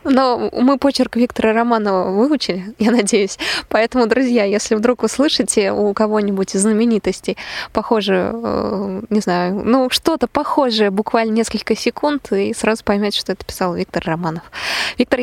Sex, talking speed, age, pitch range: female, 140 wpm, 20-39, 200-245 Hz